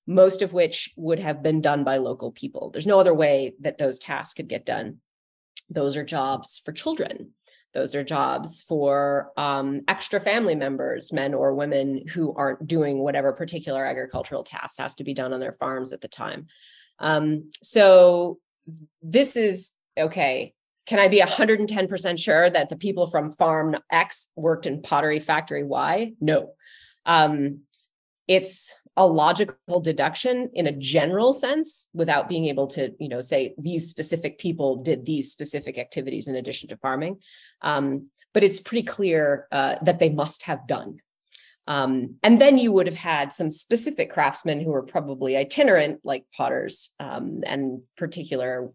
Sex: female